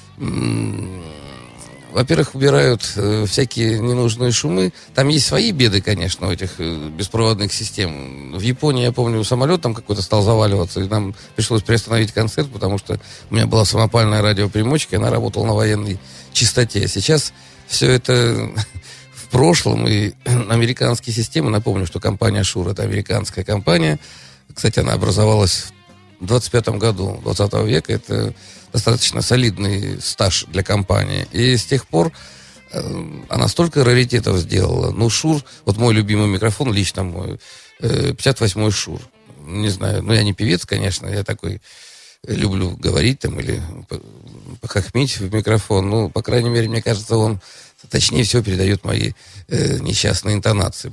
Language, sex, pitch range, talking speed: Russian, male, 100-120 Hz, 145 wpm